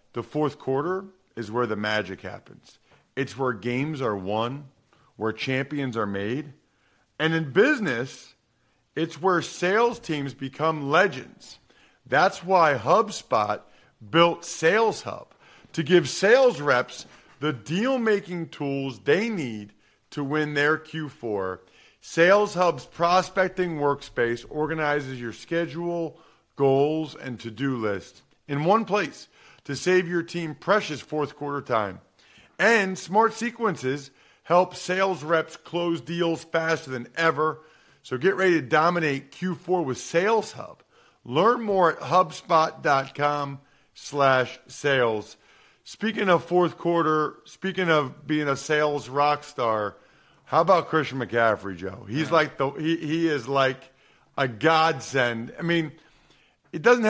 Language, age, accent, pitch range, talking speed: English, 40-59, American, 130-175 Hz, 130 wpm